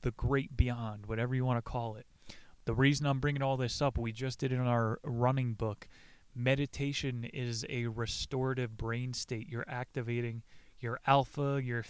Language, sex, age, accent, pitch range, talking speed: English, male, 20-39, American, 115-130 Hz, 175 wpm